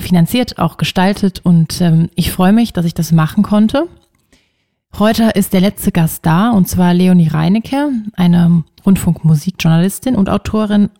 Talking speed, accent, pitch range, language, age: 145 wpm, German, 170-200 Hz, German, 30-49